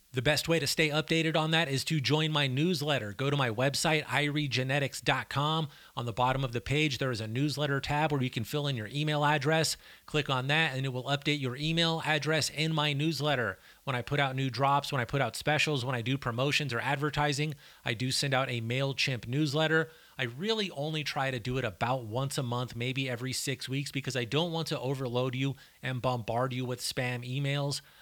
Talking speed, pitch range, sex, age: 220 wpm, 130-150 Hz, male, 30-49